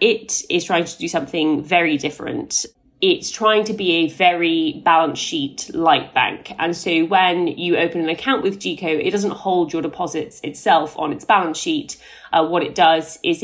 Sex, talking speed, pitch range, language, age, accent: female, 185 wpm, 155-195 Hz, English, 30-49, British